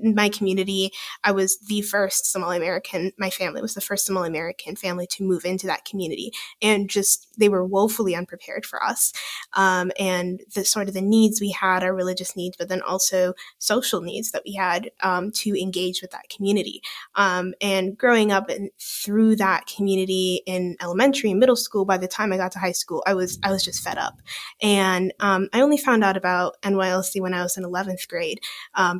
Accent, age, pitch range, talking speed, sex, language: American, 20-39, 185-215 Hz, 205 wpm, female, English